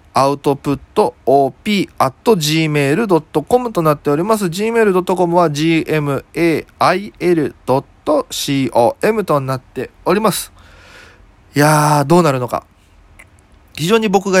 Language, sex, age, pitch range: Japanese, male, 20-39, 120-170 Hz